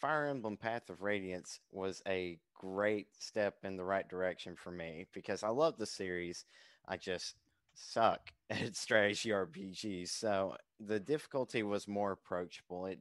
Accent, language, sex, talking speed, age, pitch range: American, English, male, 150 wpm, 20-39, 90-105 Hz